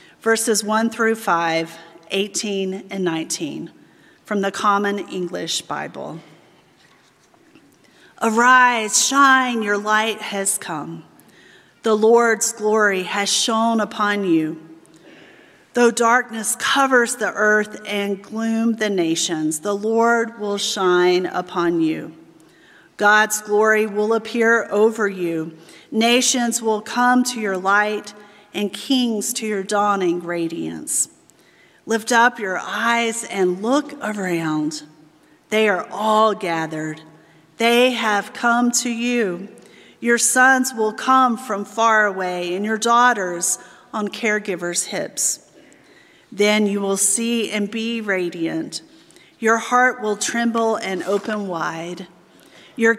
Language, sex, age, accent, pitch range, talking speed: English, female, 40-59, American, 190-230 Hz, 115 wpm